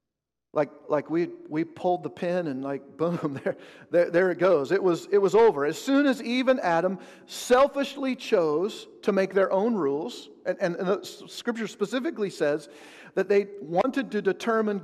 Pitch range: 155-205 Hz